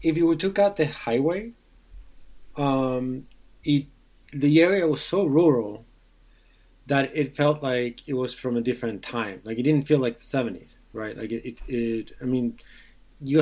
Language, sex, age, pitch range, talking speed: English, male, 30-49, 110-135 Hz, 170 wpm